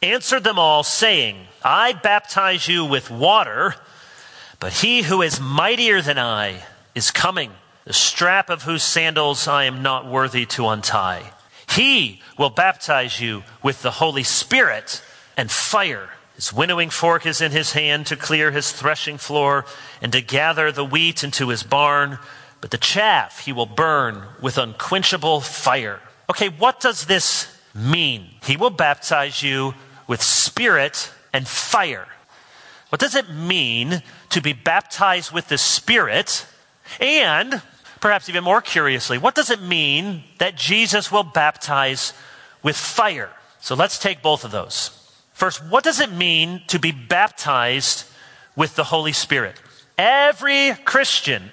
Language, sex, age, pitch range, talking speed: English, male, 40-59, 135-195 Hz, 145 wpm